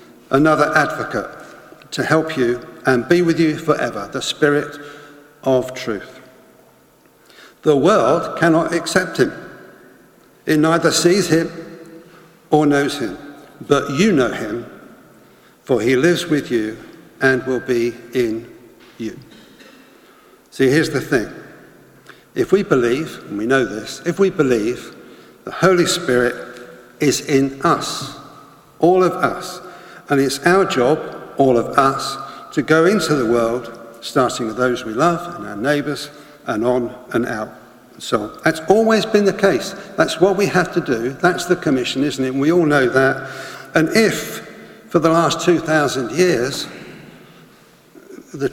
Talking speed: 145 wpm